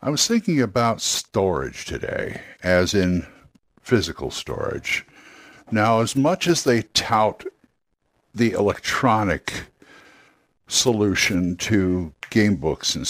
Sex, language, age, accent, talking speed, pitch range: male, English, 60-79, American, 105 wpm, 90-130 Hz